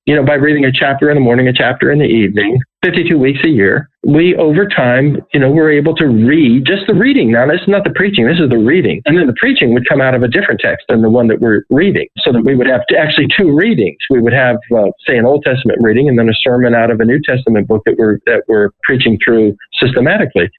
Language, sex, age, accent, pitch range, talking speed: English, male, 50-69, American, 115-150 Hz, 270 wpm